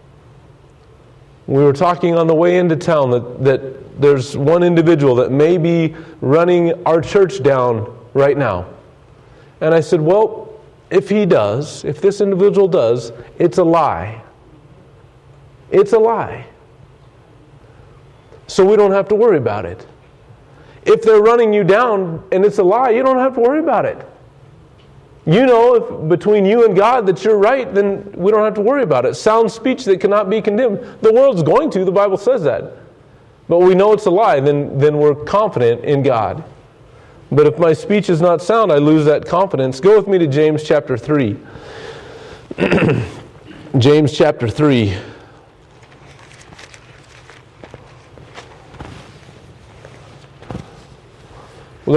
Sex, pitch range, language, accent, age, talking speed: male, 130-190 Hz, English, American, 40-59, 150 wpm